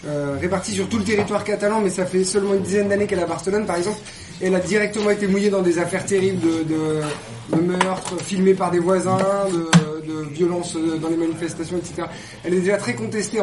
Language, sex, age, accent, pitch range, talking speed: French, male, 30-49, French, 175-215 Hz, 225 wpm